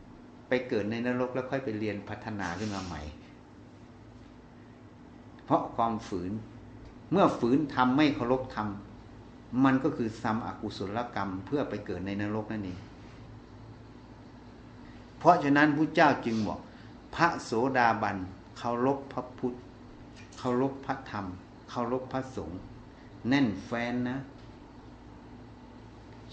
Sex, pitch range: male, 105-135 Hz